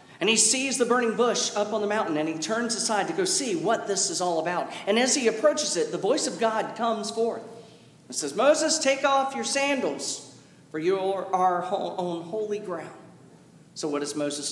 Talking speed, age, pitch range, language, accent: 205 wpm, 40-59, 175-250 Hz, English, American